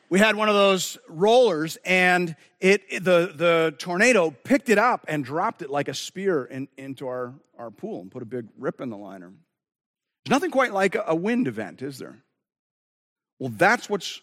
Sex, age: male, 40-59